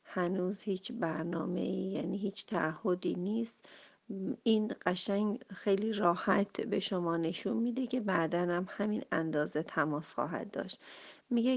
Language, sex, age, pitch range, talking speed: Persian, female, 40-59, 175-225 Hz, 125 wpm